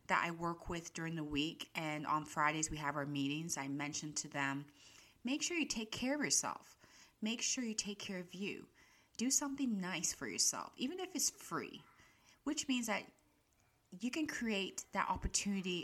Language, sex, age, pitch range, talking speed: English, female, 30-49, 165-225 Hz, 185 wpm